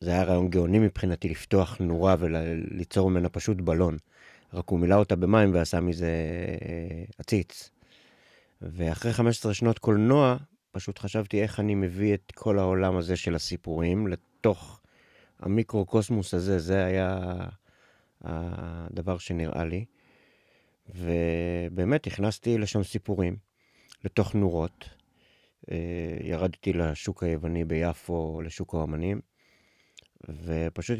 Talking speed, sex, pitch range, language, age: 105 wpm, male, 90-110 Hz, Hebrew, 30-49